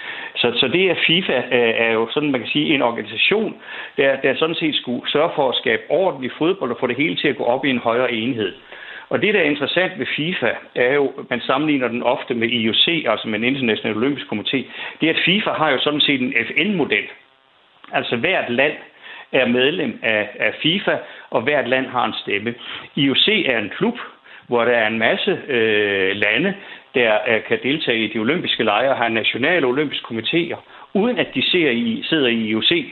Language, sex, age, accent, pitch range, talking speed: Danish, male, 60-79, native, 115-145 Hz, 200 wpm